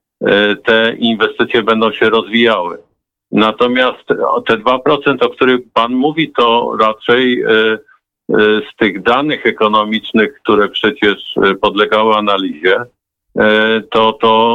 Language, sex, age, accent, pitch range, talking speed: Polish, male, 50-69, native, 100-115 Hz, 100 wpm